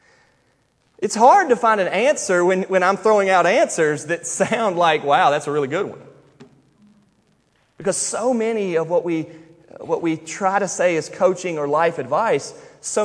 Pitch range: 150-205 Hz